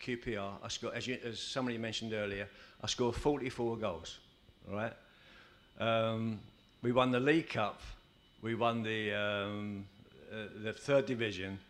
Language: English